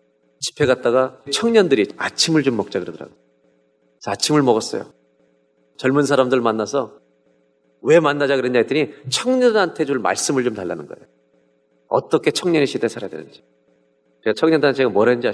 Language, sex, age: Korean, male, 40-59